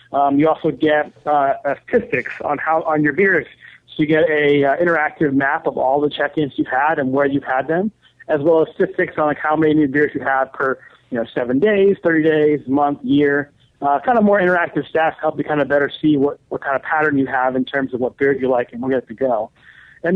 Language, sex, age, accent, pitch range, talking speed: English, male, 40-59, American, 140-160 Hz, 245 wpm